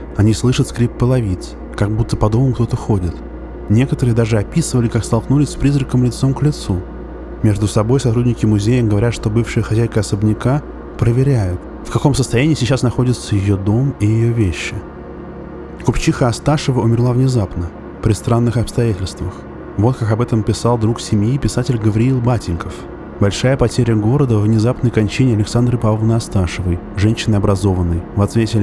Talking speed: 145 wpm